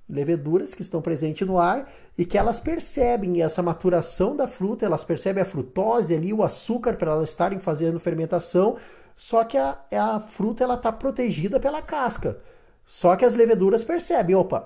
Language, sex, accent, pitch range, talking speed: Portuguese, male, Brazilian, 165-230 Hz, 170 wpm